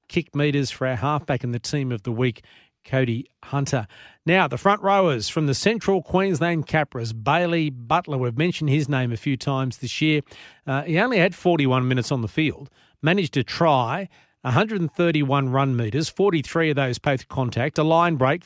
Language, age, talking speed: English, 40-59, 180 wpm